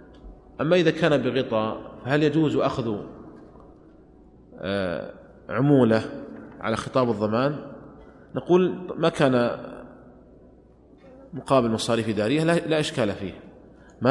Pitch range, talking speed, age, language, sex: 110-145 Hz, 95 wpm, 30-49, Arabic, male